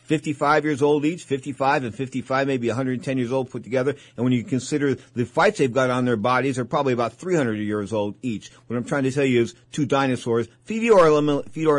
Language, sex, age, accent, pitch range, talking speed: English, male, 50-69, American, 125-160 Hz, 210 wpm